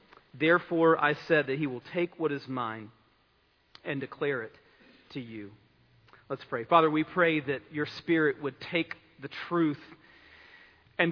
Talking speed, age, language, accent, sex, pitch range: 150 wpm, 40-59, English, American, male, 135-165 Hz